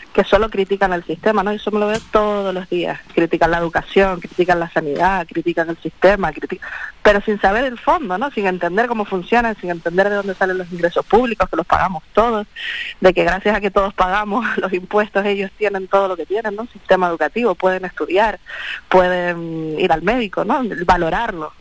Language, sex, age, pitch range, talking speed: Spanish, female, 30-49, 180-225 Hz, 205 wpm